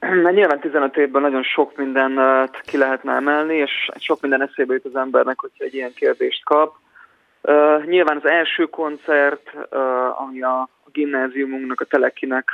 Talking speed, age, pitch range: 160 wpm, 20-39, 130-145 Hz